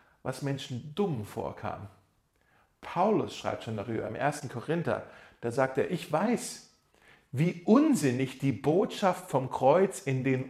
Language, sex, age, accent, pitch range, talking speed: German, male, 40-59, German, 170-240 Hz, 135 wpm